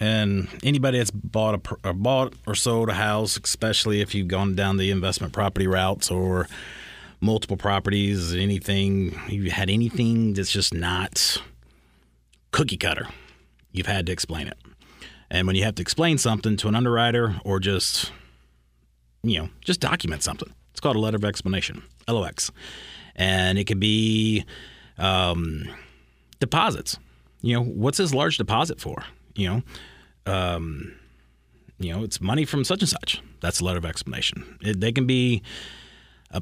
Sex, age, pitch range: male, 30-49, 90-115 Hz